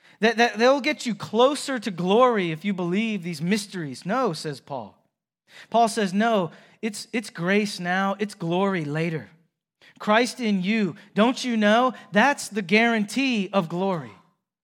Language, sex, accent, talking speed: English, male, American, 145 wpm